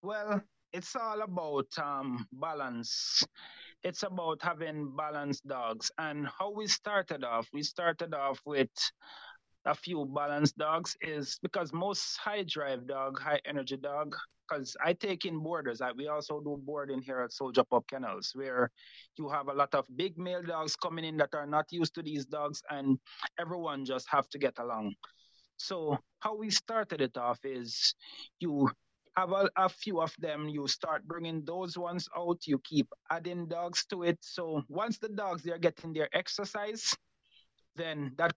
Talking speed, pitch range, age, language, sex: 165 wpm, 140-180 Hz, 30-49, English, male